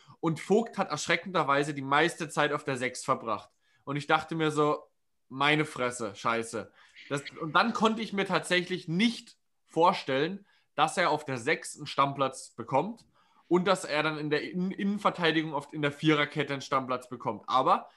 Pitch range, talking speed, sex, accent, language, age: 140-180 Hz, 170 wpm, male, German, German, 20-39